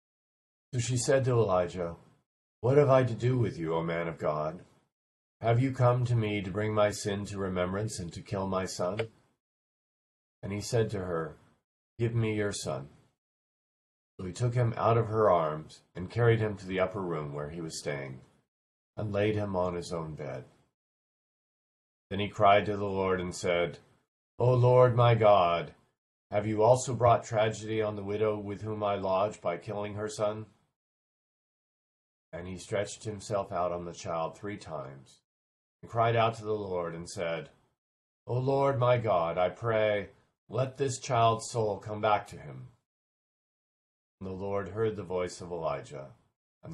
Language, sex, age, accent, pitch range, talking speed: English, male, 40-59, American, 85-110 Hz, 175 wpm